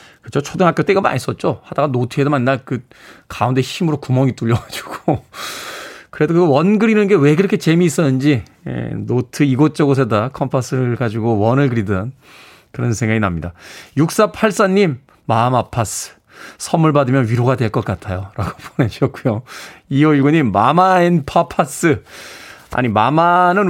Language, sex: Korean, male